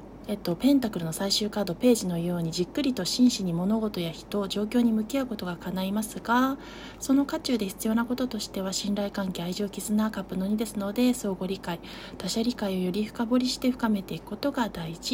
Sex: female